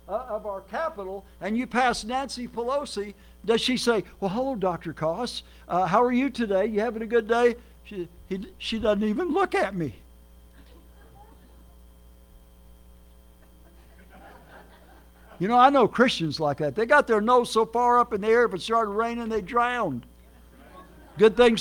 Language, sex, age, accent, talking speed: English, male, 60-79, American, 165 wpm